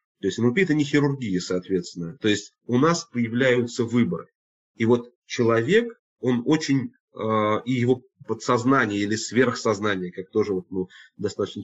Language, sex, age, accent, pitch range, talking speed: Russian, male, 30-49, native, 105-130 Hz, 155 wpm